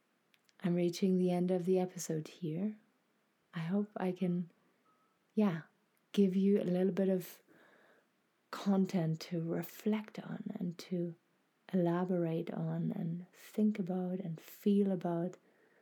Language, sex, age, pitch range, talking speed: English, female, 30-49, 170-195 Hz, 125 wpm